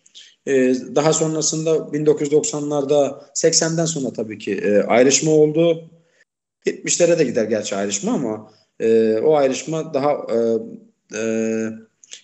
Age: 40-59